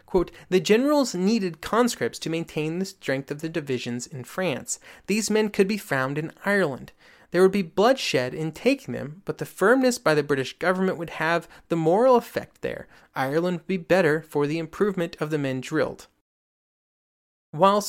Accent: American